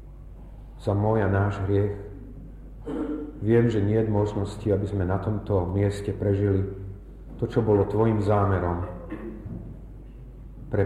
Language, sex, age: Slovak, male, 40-59